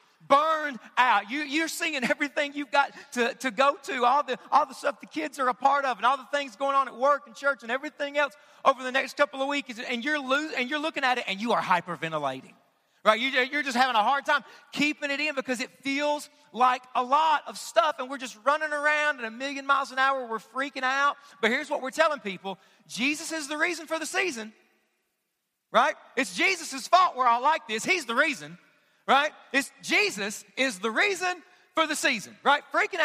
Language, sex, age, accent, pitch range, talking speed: English, male, 40-59, American, 245-300 Hz, 220 wpm